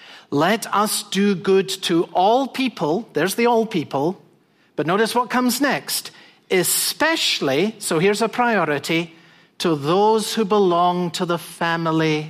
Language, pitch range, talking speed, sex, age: English, 155-200 Hz, 135 wpm, male, 50-69